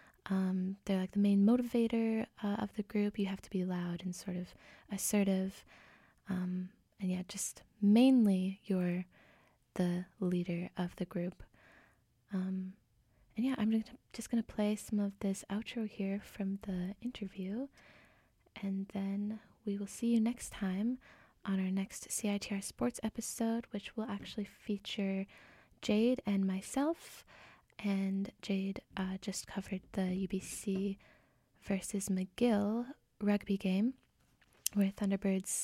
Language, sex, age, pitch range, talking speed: English, female, 20-39, 190-215 Hz, 135 wpm